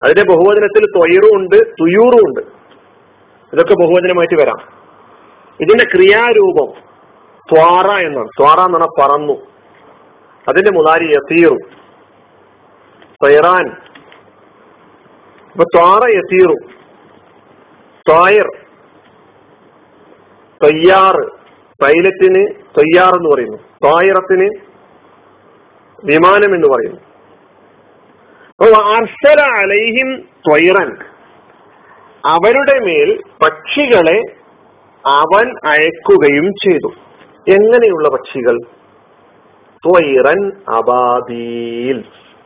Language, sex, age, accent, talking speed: Malayalam, male, 50-69, native, 60 wpm